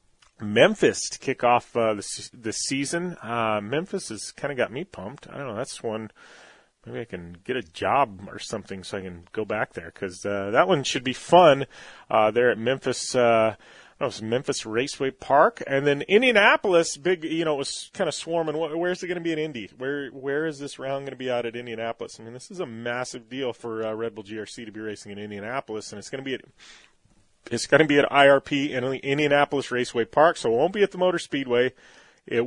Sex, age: male, 30-49